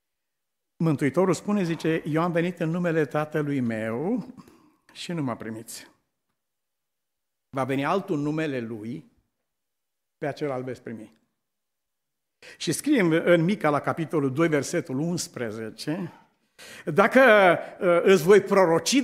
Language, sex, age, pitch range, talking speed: Romanian, male, 60-79, 135-185 Hz, 115 wpm